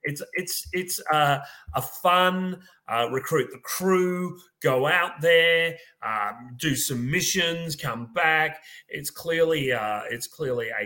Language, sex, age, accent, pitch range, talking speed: English, male, 30-49, Australian, 110-160 Hz, 140 wpm